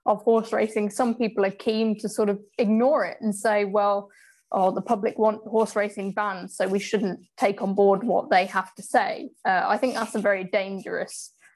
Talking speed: 210 wpm